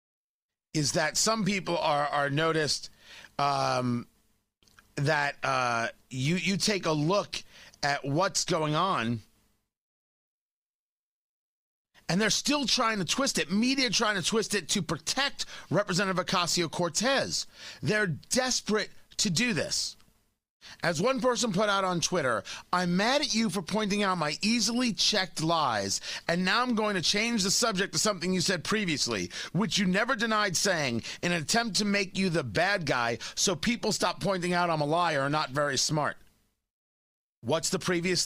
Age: 30-49